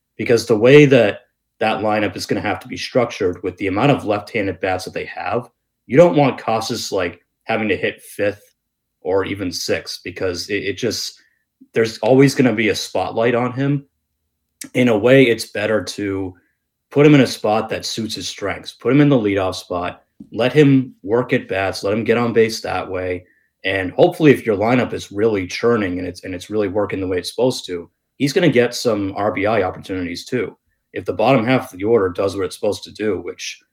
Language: English